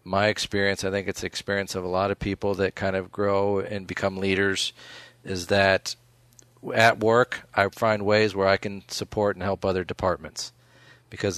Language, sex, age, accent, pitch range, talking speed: English, male, 40-59, American, 95-110 Hz, 185 wpm